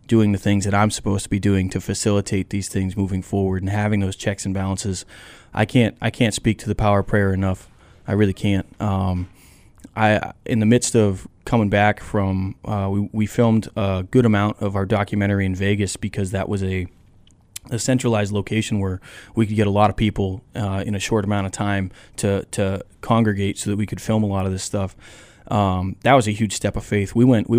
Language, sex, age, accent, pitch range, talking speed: English, male, 20-39, American, 100-110 Hz, 220 wpm